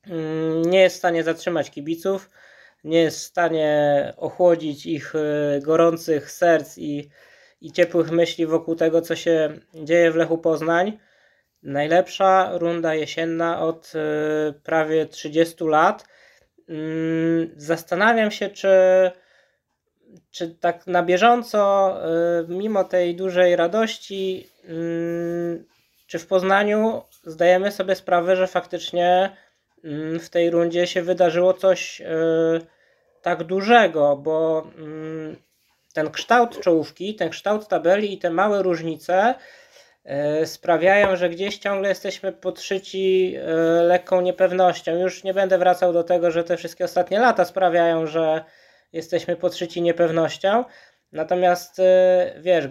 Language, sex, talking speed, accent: Polish, male, 110 wpm, native